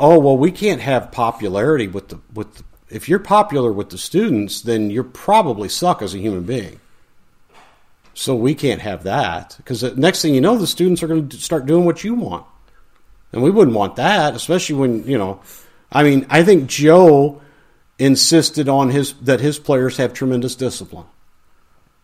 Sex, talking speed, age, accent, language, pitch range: male, 195 wpm, 50-69, American, English, 115-170 Hz